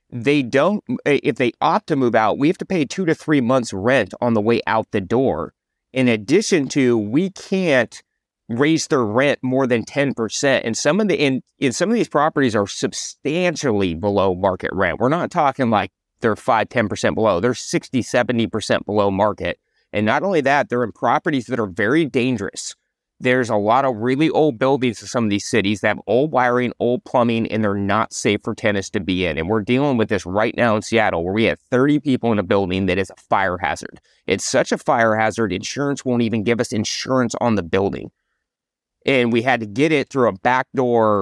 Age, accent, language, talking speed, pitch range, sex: 30-49, American, English, 210 wpm, 110-140 Hz, male